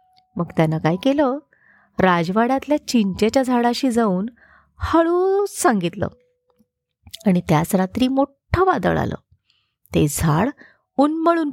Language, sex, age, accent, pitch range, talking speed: Marathi, female, 30-49, native, 185-300 Hz, 100 wpm